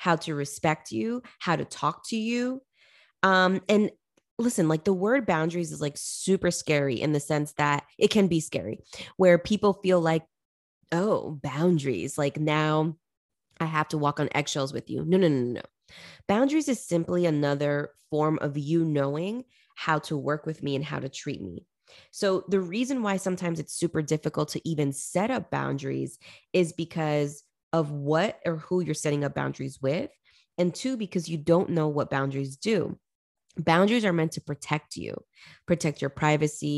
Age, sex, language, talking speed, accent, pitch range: 20-39, female, English, 180 wpm, American, 145-180 Hz